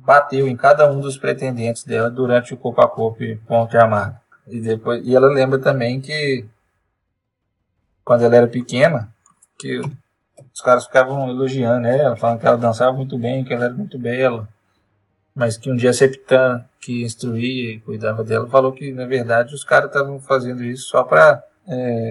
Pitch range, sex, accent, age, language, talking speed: 115-135 Hz, male, Brazilian, 20-39, Portuguese, 180 wpm